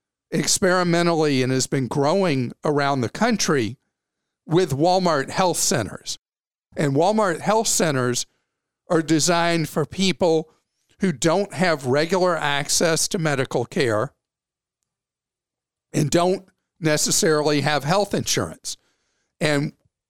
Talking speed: 105 wpm